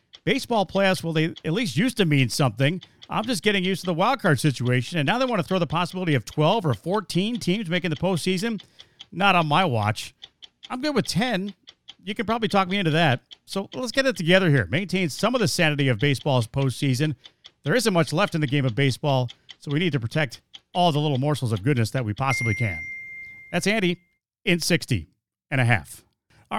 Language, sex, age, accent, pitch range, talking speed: English, male, 40-59, American, 135-180 Hz, 215 wpm